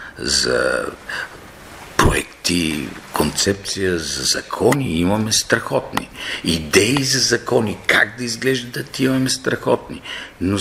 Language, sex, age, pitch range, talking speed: Bulgarian, male, 50-69, 100-135 Hz, 90 wpm